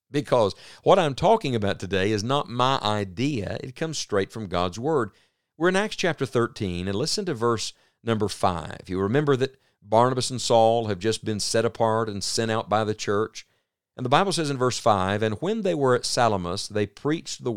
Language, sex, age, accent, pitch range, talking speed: English, male, 50-69, American, 100-135 Hz, 205 wpm